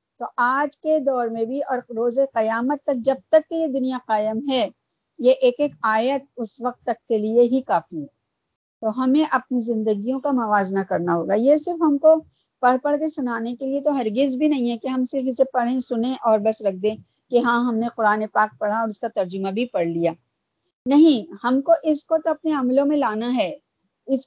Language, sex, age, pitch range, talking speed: Urdu, female, 50-69, 215-280 Hz, 220 wpm